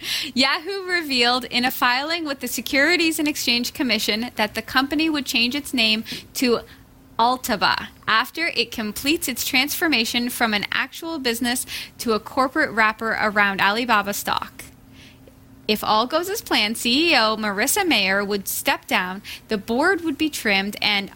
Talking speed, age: 150 wpm, 10-29